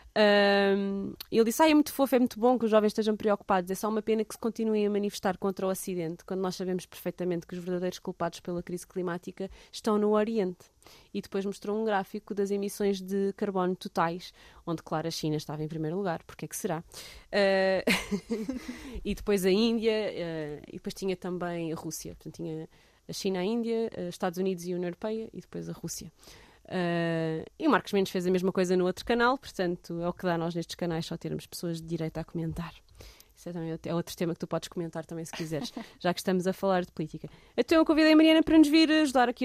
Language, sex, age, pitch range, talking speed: Portuguese, female, 20-39, 175-220 Hz, 230 wpm